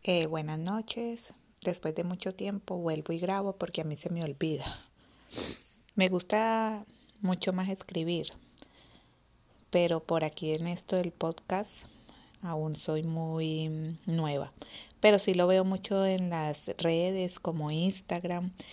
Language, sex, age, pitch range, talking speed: Spanish, female, 30-49, 160-190 Hz, 135 wpm